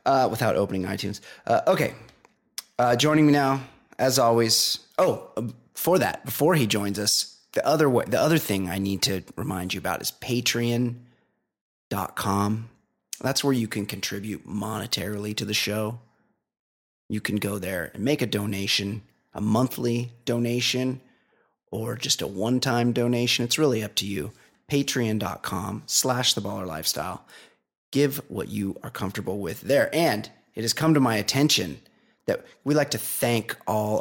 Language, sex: English, male